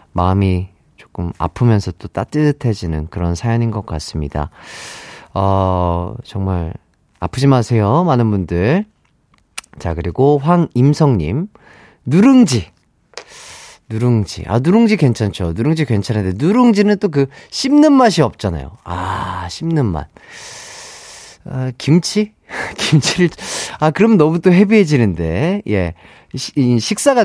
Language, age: Korean, 30-49